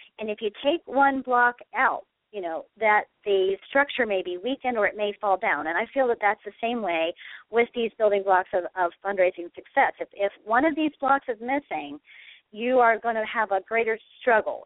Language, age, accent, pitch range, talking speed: English, 40-59, American, 195-245 Hz, 215 wpm